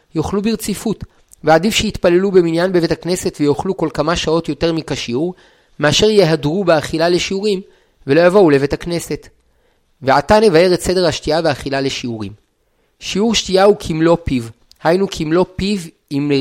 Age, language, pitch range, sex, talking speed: 30-49, Hebrew, 150-190 Hz, male, 135 wpm